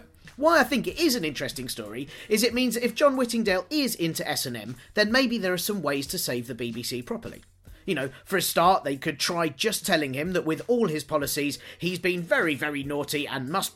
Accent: British